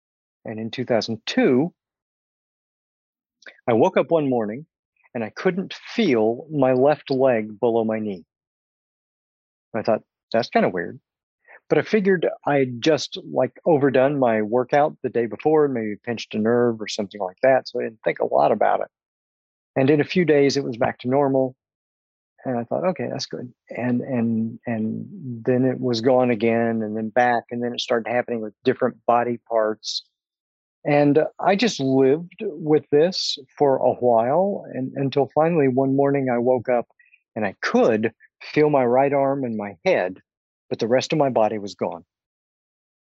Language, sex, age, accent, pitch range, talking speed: English, male, 50-69, American, 110-140 Hz, 170 wpm